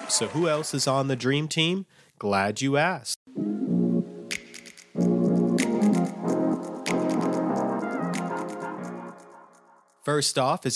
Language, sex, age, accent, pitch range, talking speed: English, male, 30-49, American, 110-130 Hz, 80 wpm